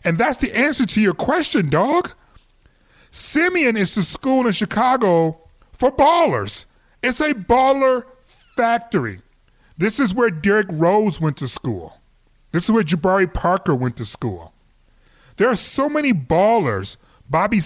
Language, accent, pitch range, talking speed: English, American, 160-230 Hz, 145 wpm